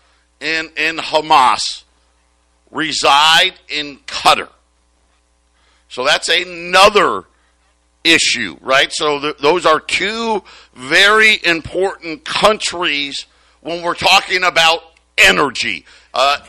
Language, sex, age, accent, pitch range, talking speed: English, male, 50-69, American, 155-200 Hz, 85 wpm